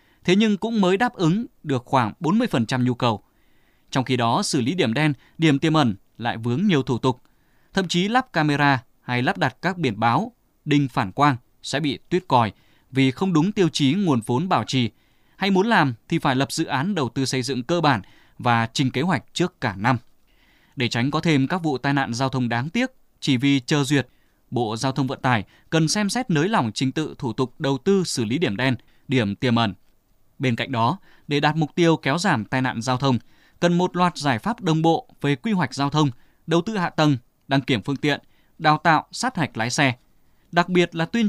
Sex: male